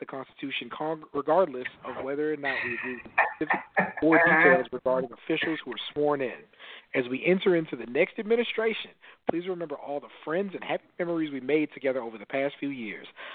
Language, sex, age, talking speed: English, male, 40-59, 175 wpm